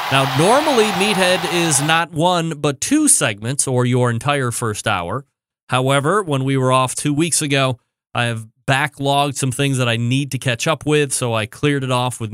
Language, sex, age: English, male, 30-49